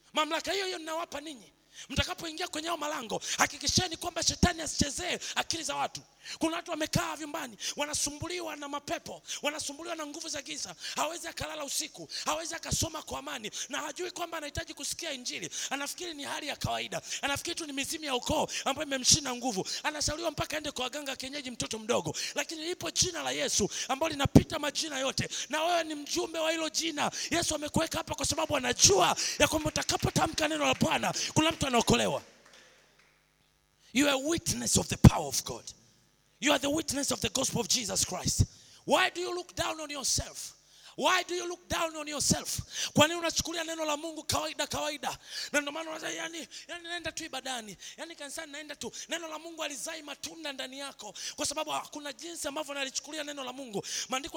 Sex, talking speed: male, 175 wpm